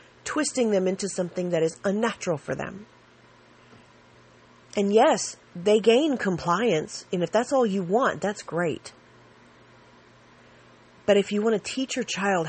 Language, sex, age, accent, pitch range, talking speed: English, female, 40-59, American, 150-200 Hz, 145 wpm